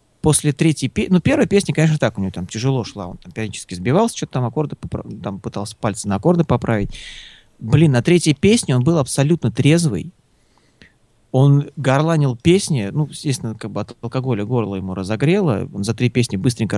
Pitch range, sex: 115-155 Hz, male